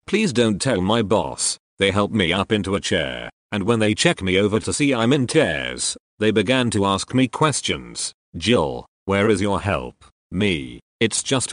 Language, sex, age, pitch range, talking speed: English, male, 40-59, 100-125 Hz, 195 wpm